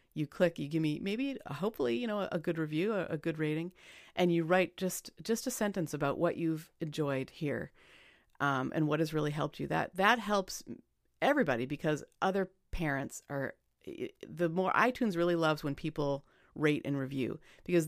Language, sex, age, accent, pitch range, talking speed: English, female, 40-59, American, 150-180 Hz, 180 wpm